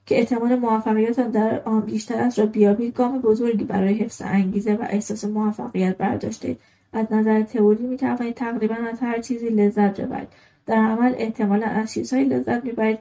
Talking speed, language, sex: 150 wpm, Persian, female